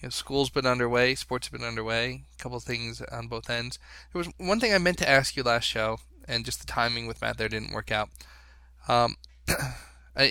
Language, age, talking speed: English, 10-29, 225 wpm